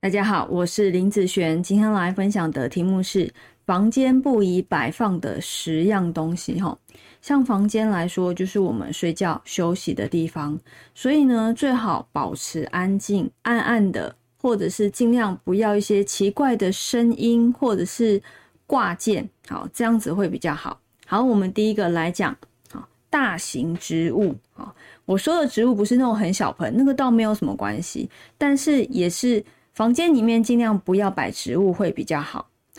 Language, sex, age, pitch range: Chinese, female, 20-39, 185-235 Hz